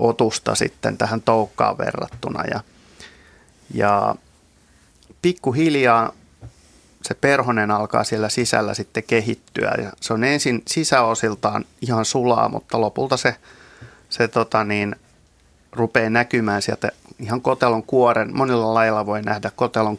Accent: native